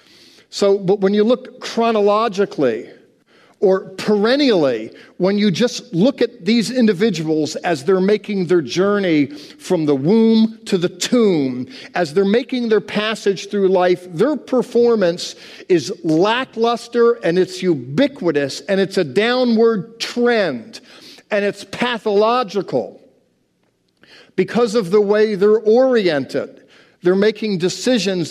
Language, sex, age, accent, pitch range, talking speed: English, male, 50-69, American, 180-230 Hz, 120 wpm